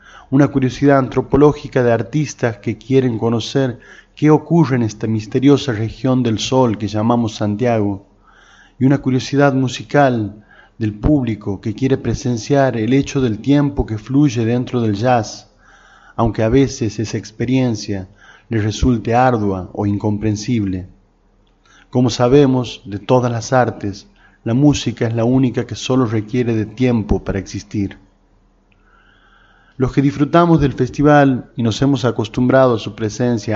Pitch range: 105-130 Hz